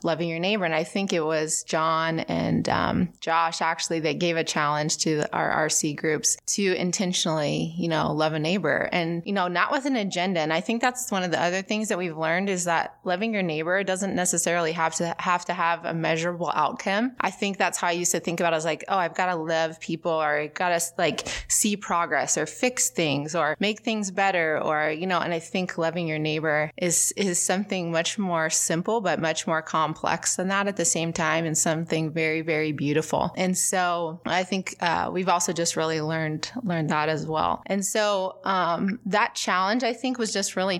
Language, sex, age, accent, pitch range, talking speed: English, female, 20-39, American, 160-190 Hz, 220 wpm